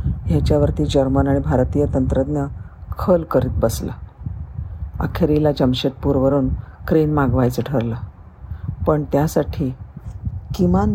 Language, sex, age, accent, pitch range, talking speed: Marathi, female, 50-69, native, 100-150 Hz, 90 wpm